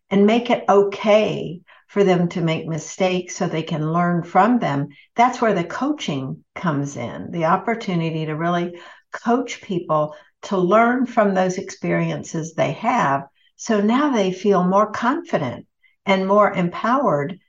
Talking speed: 150 wpm